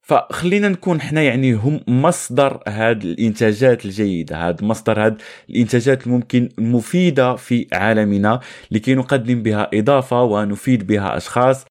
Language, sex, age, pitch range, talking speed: Arabic, male, 20-39, 105-135 Hz, 125 wpm